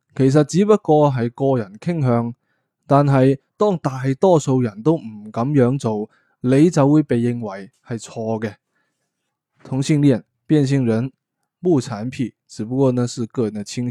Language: Chinese